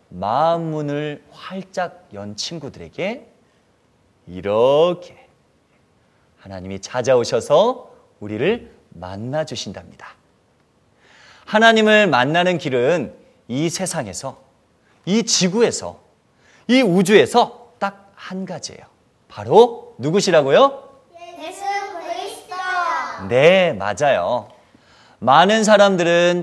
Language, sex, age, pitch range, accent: Korean, male, 30-49, 140-220 Hz, native